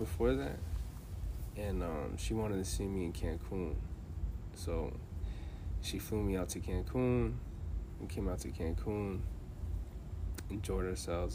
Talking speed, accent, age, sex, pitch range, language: 130 wpm, American, 20-39, male, 80-95 Hz, English